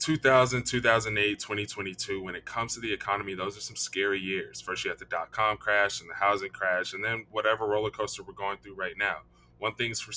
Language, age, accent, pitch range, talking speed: English, 20-39, American, 100-120 Hz, 220 wpm